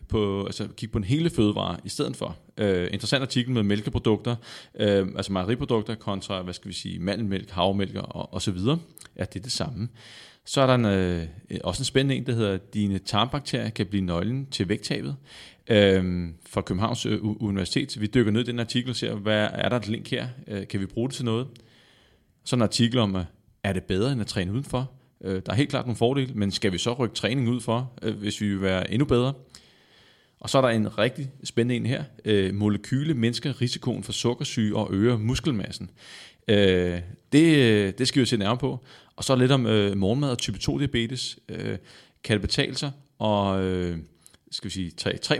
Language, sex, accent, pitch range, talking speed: Danish, male, native, 100-125 Hz, 205 wpm